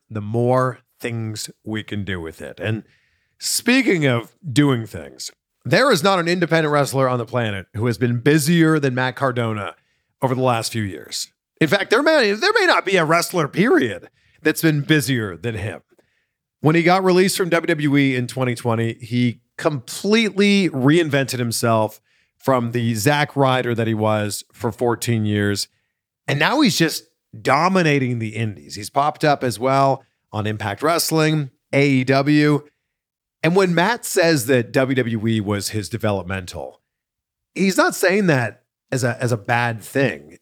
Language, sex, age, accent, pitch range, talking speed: English, male, 40-59, American, 110-150 Hz, 155 wpm